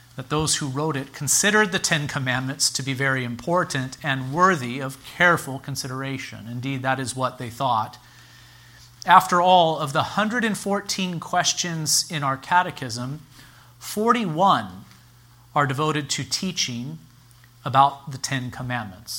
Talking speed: 130 wpm